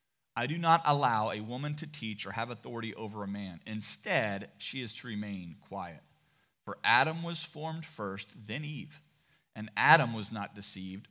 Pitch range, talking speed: 105-135 Hz, 175 wpm